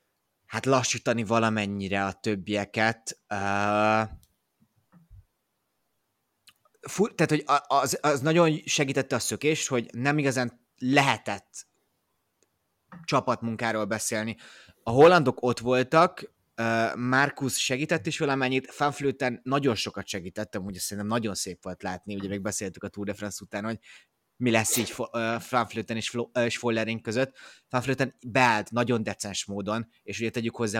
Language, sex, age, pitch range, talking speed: Hungarian, male, 30-49, 105-135 Hz, 130 wpm